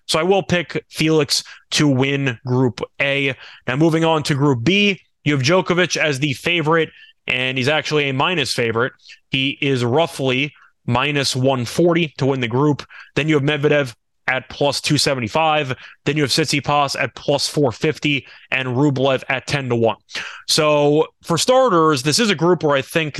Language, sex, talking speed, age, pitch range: English, male, 170 wpm, 20-39, 130-160 Hz